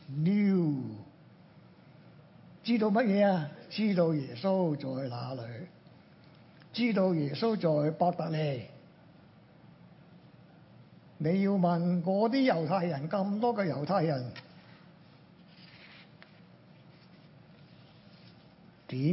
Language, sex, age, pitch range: Chinese, male, 60-79, 145-180 Hz